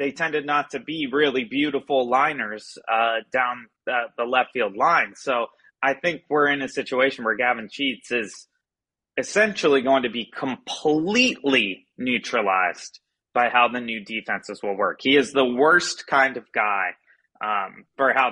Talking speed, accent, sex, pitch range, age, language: 160 wpm, American, male, 120-165 Hz, 30-49, English